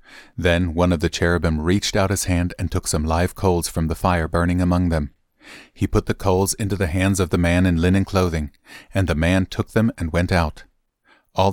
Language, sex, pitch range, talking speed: English, male, 85-105 Hz, 220 wpm